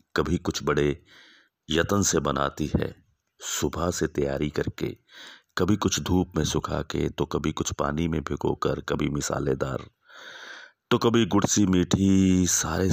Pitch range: 75-95 Hz